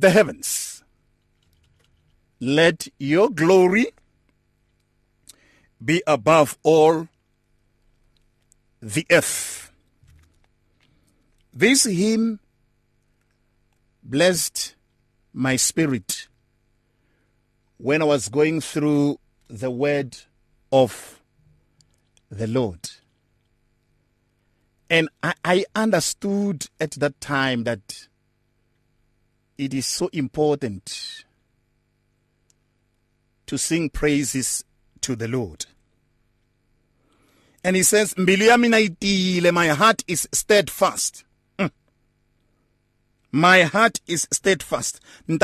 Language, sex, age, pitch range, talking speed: English, male, 50-69, 120-175 Hz, 70 wpm